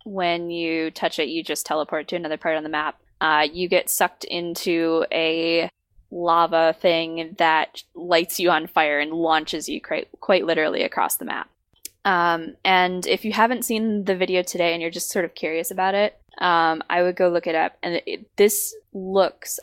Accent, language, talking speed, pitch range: American, English, 190 wpm, 165-205 Hz